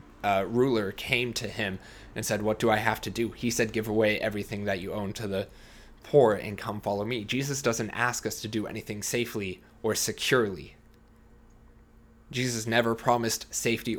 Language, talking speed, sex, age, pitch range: English, 180 wpm, male, 20-39, 100-115 Hz